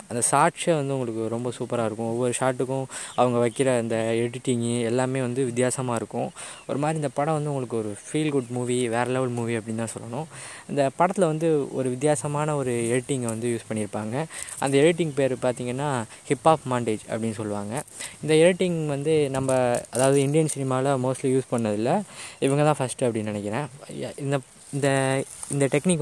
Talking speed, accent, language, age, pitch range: 165 wpm, native, Tamil, 20-39, 120-150 Hz